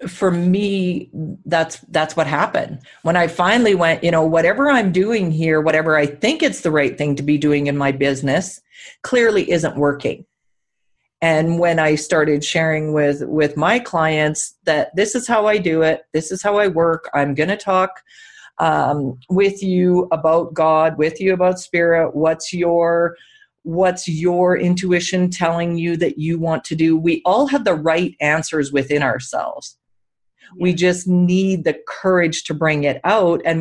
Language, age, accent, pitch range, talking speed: English, 40-59, American, 155-185 Hz, 170 wpm